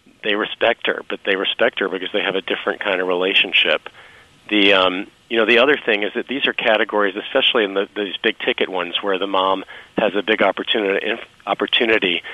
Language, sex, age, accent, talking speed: English, male, 40-59, American, 200 wpm